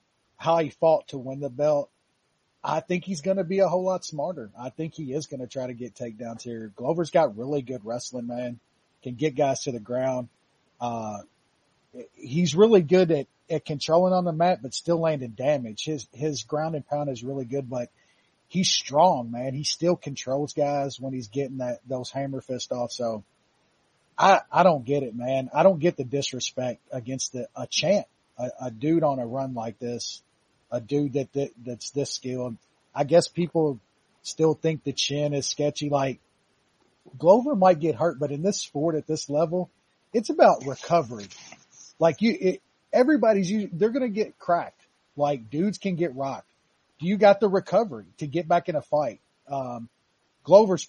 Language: English